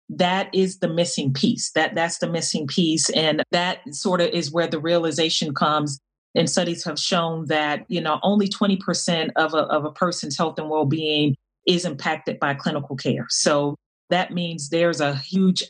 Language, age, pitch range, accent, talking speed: English, 30-49, 150-175 Hz, American, 185 wpm